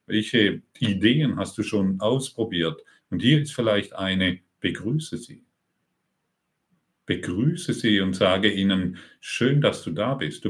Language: German